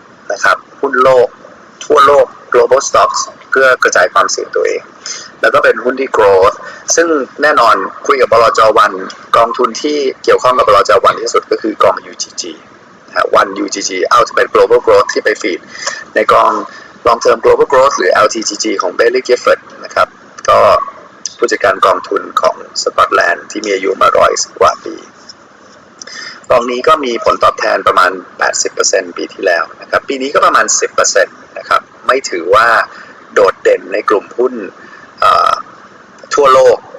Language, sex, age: Thai, male, 30-49